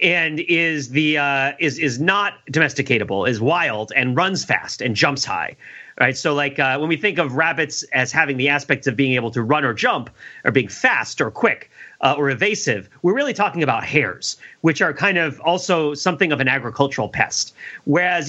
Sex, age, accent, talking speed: male, 30-49, American, 195 wpm